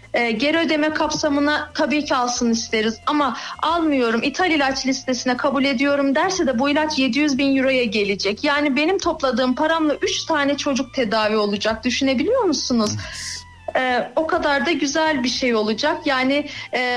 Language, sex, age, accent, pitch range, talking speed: Turkish, female, 40-59, native, 250-300 Hz, 155 wpm